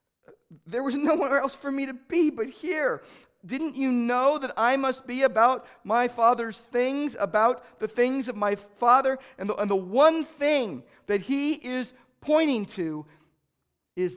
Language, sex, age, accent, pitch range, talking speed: English, male, 50-69, American, 180-270 Hz, 165 wpm